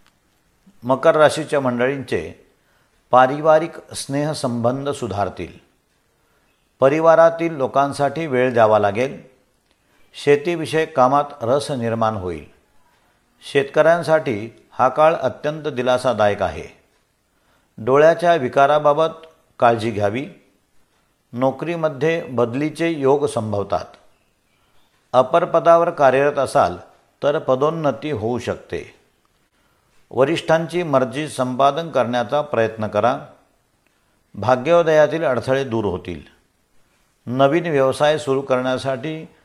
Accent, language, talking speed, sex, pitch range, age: native, Marathi, 80 wpm, male, 120-150 Hz, 50-69